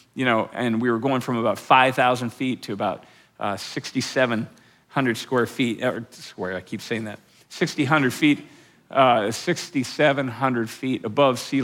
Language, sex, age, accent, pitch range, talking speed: English, male, 40-59, American, 120-150 Hz, 150 wpm